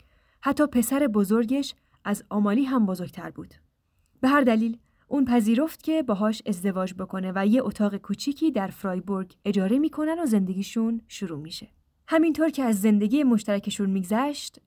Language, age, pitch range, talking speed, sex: Persian, 10-29, 195-250 Hz, 145 wpm, female